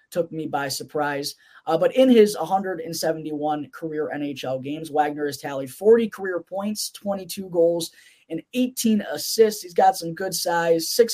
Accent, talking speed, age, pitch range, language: American, 150 wpm, 20-39, 155-200 Hz, English